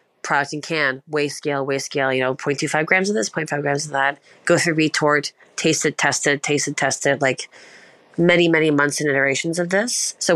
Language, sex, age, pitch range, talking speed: English, female, 30-49, 145-175 Hz, 220 wpm